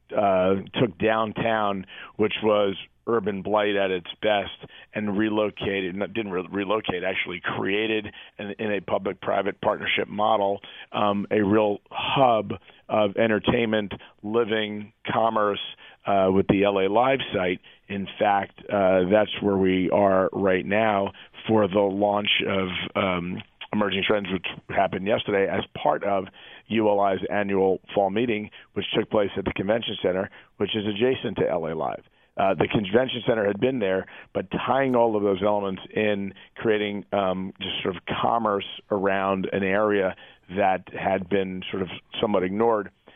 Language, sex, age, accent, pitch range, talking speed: English, male, 40-59, American, 95-110 Hz, 145 wpm